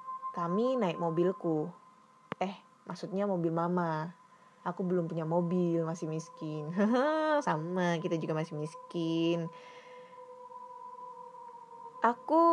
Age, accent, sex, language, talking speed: 20-39, native, female, Indonesian, 90 wpm